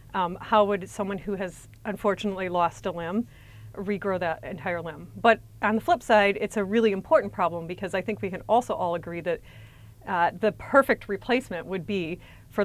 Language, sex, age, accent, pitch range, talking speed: English, female, 30-49, American, 180-215 Hz, 190 wpm